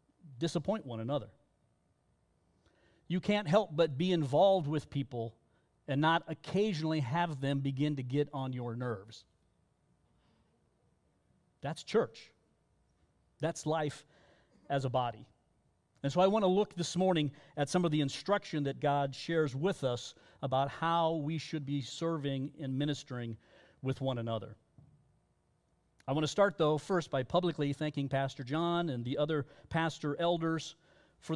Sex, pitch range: male, 130-160 Hz